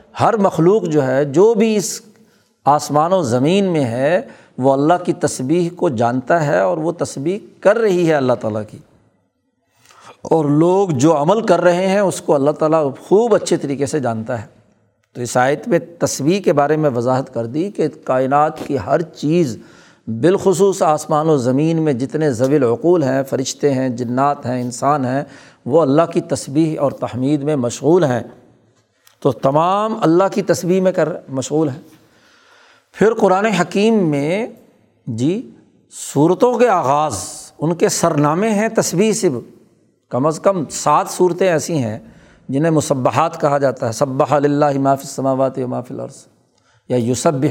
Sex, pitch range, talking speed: male, 135-180 Hz, 165 wpm